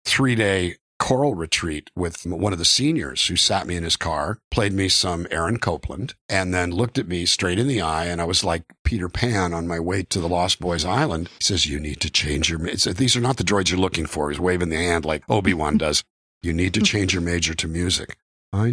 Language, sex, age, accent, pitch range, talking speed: English, male, 50-69, American, 85-110 Hz, 235 wpm